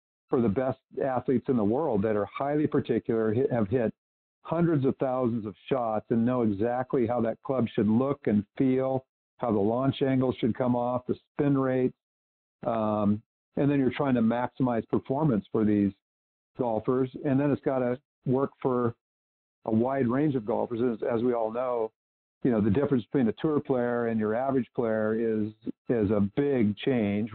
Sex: male